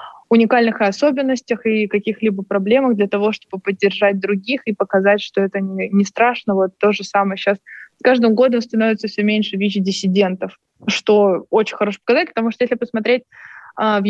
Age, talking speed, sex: 20-39, 160 wpm, female